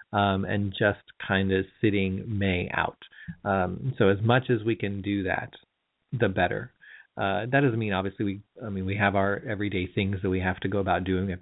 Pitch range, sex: 100-115 Hz, male